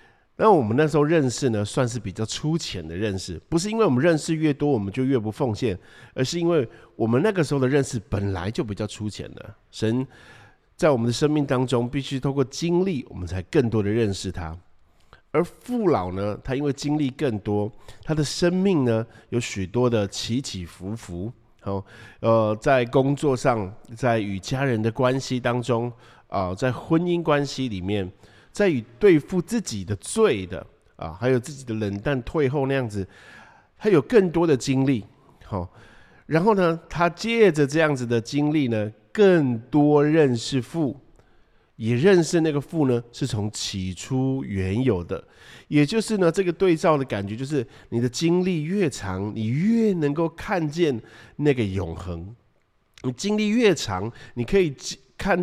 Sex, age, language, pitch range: male, 50-69, Chinese, 110-155 Hz